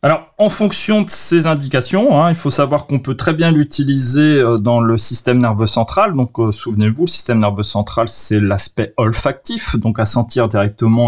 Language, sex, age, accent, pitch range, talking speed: French, male, 30-49, French, 110-150 Hz, 185 wpm